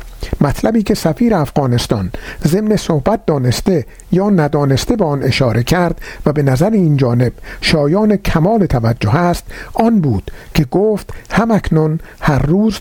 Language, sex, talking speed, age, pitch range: Persian, male, 135 wpm, 50-69, 135-190 Hz